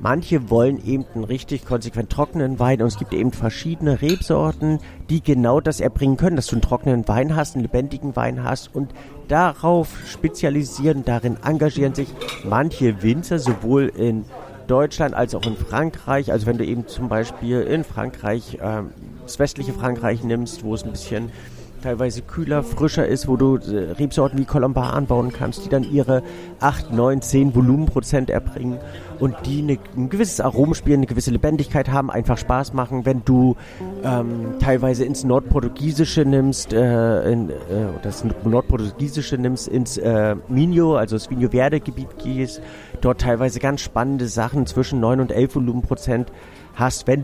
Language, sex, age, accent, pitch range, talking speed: German, male, 50-69, German, 120-145 Hz, 165 wpm